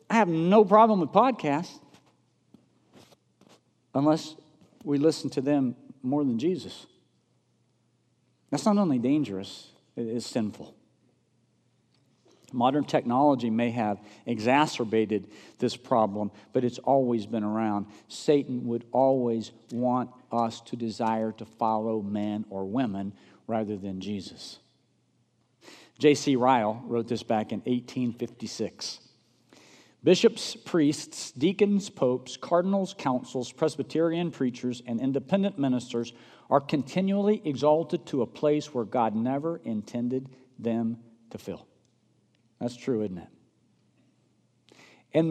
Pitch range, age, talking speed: 115-155 Hz, 50-69, 110 wpm